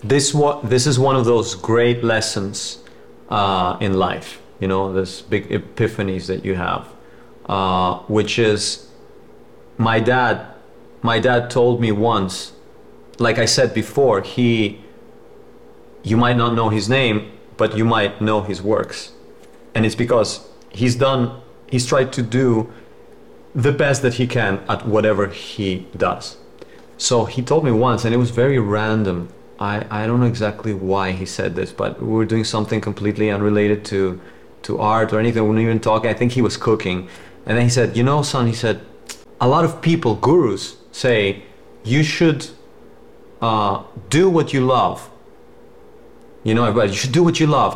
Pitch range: 100-120 Hz